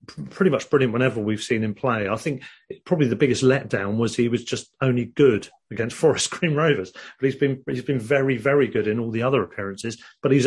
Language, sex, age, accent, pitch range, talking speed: English, male, 40-59, British, 110-130 Hz, 220 wpm